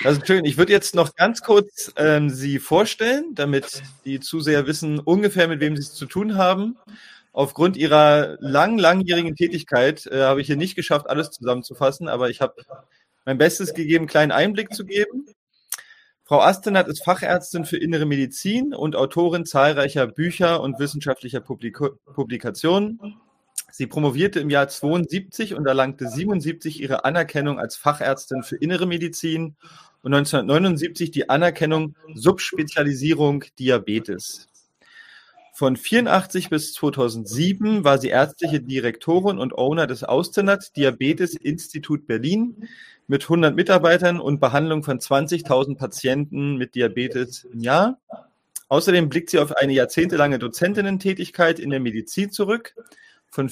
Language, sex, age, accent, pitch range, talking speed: German, male, 30-49, German, 135-180 Hz, 140 wpm